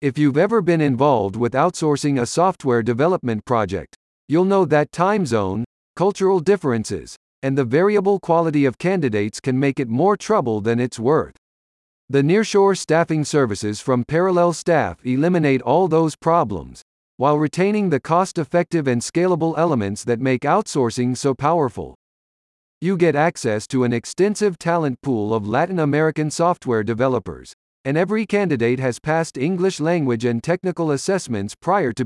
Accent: American